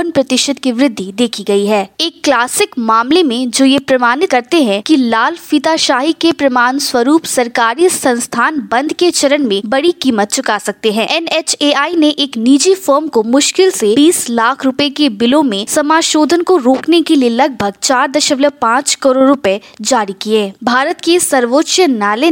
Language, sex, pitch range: Hindi, female, 240-310 Hz